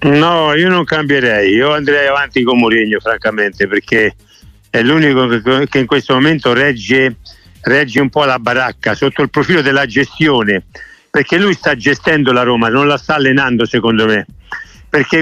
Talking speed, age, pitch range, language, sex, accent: 160 wpm, 50-69, 120-160 Hz, Italian, male, native